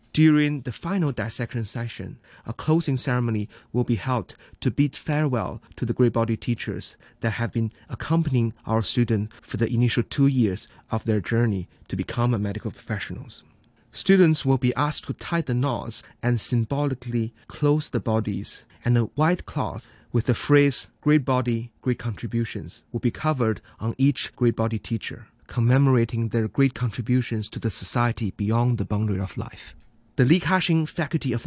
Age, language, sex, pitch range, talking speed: 30-49, English, male, 115-140 Hz, 165 wpm